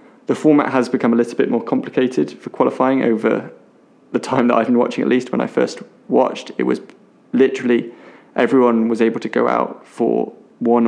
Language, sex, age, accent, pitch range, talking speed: English, male, 20-39, British, 115-130 Hz, 195 wpm